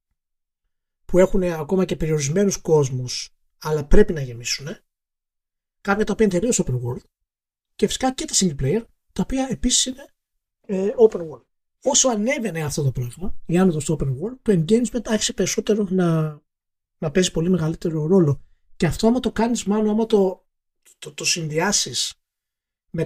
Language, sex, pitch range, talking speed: Greek, male, 145-215 Hz, 160 wpm